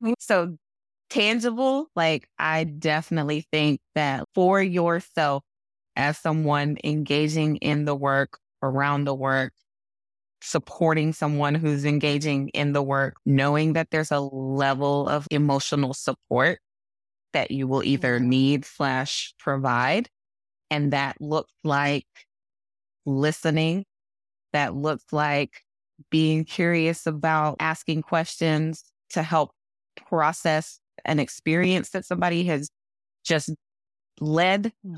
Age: 20-39